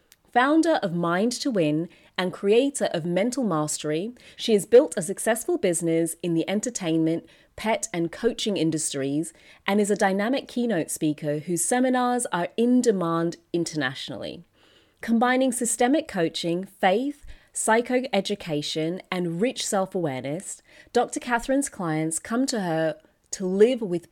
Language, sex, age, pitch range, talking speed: English, female, 30-49, 165-245 Hz, 130 wpm